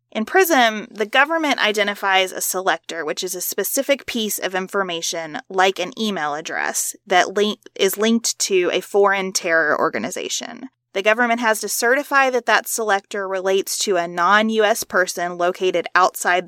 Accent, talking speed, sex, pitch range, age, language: American, 150 wpm, female, 175-230 Hz, 30-49, English